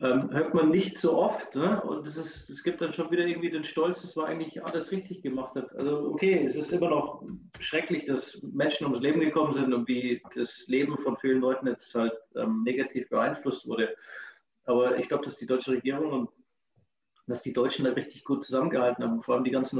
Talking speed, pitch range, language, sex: 205 wpm, 130-160 Hz, English, male